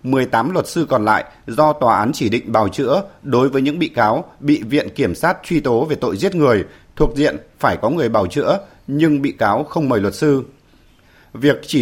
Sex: male